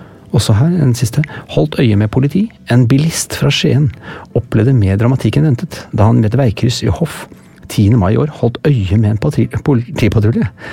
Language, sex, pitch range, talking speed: English, male, 105-140 Hz, 190 wpm